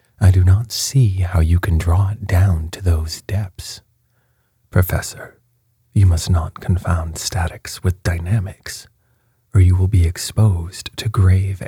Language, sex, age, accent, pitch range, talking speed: English, male, 30-49, American, 90-115 Hz, 145 wpm